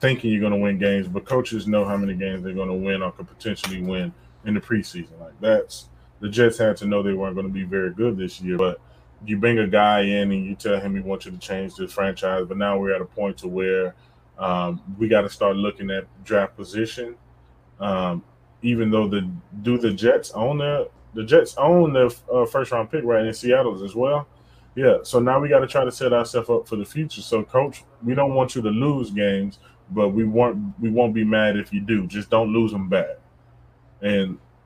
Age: 20-39